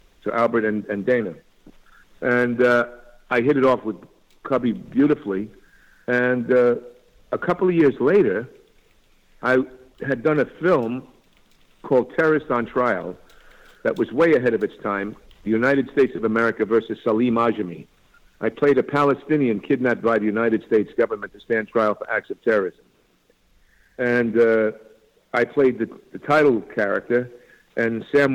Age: 50-69